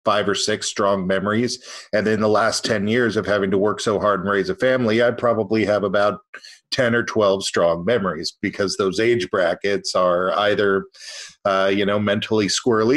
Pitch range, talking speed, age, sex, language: 100-125 Hz, 190 wpm, 40-59, male, English